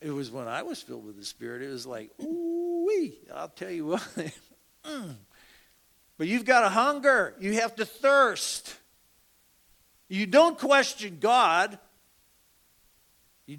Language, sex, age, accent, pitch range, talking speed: English, male, 60-79, American, 115-170 Hz, 140 wpm